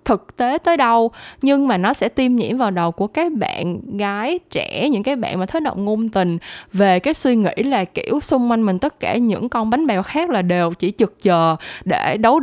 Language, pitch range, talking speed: Vietnamese, 185-255 Hz, 230 wpm